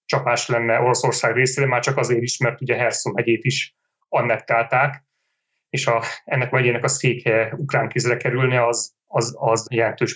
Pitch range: 120-140 Hz